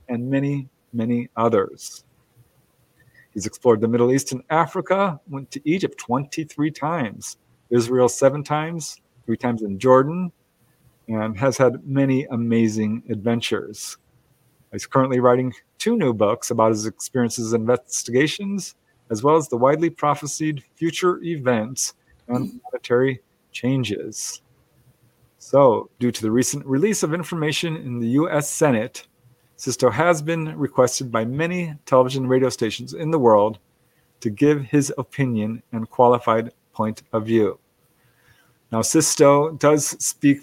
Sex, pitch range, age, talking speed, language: male, 120-150 Hz, 40-59, 130 wpm, English